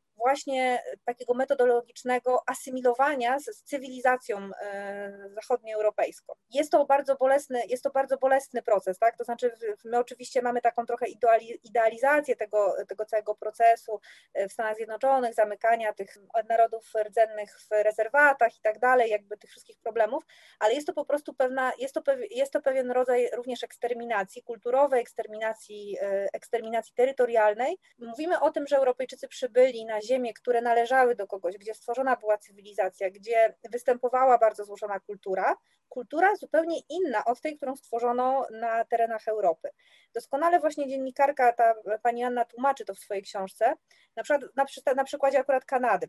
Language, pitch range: Polish, 220-270 Hz